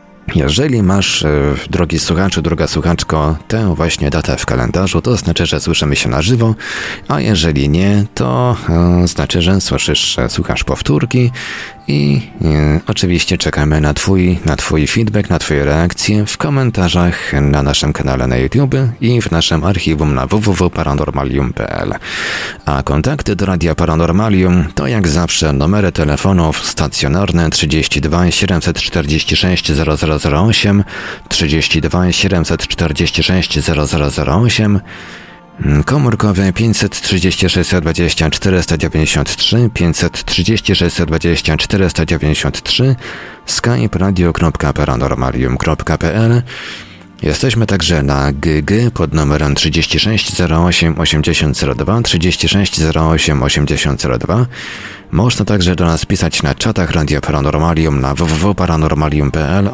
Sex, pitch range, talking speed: male, 75-95 Hz, 100 wpm